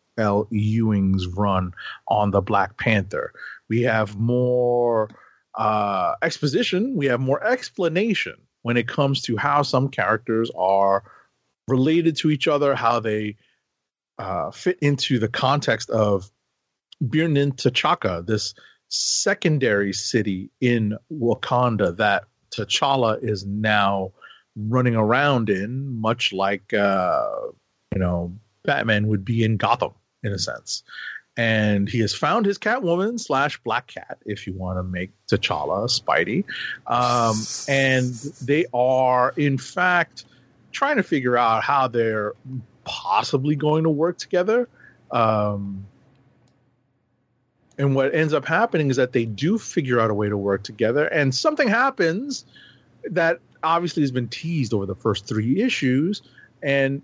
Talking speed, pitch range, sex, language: 135 wpm, 105-145 Hz, male, English